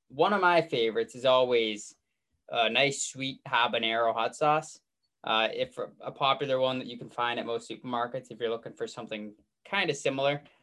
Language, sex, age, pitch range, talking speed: English, male, 10-29, 110-145 Hz, 180 wpm